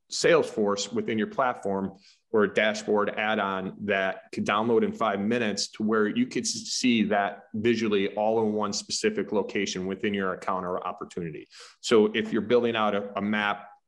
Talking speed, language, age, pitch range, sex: 170 wpm, English, 30-49, 100-115 Hz, male